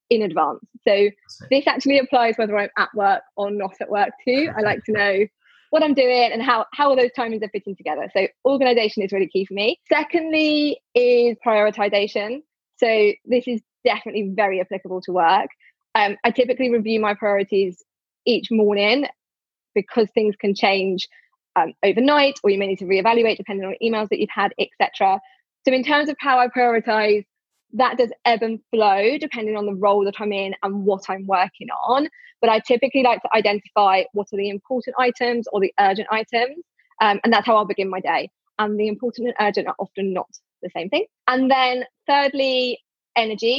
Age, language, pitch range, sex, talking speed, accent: 10-29, English, 200-245 Hz, female, 190 wpm, British